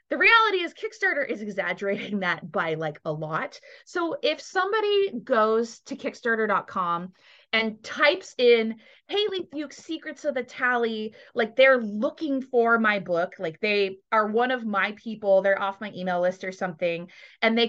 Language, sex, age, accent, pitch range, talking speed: English, female, 20-39, American, 190-270 Hz, 165 wpm